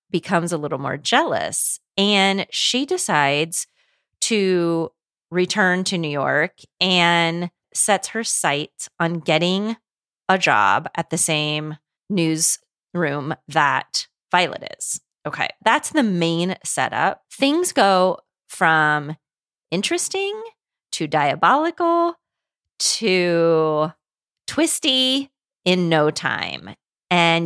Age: 30-49